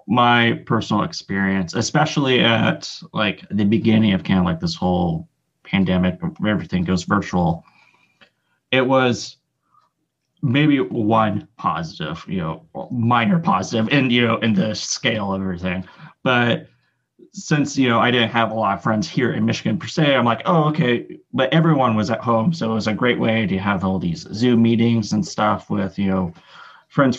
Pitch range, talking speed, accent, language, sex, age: 95-130 Hz, 170 wpm, American, English, male, 30-49